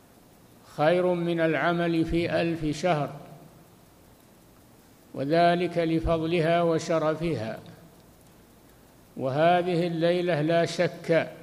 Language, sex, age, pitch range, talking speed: Arabic, male, 60-79, 160-175 Hz, 70 wpm